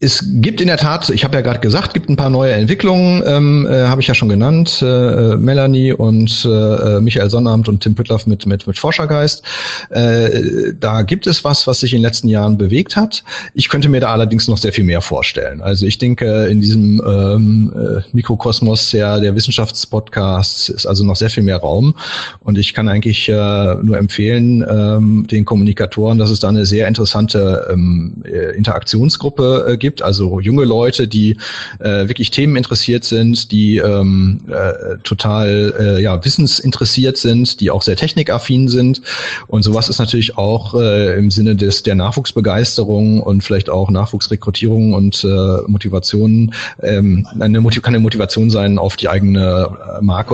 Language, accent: English, German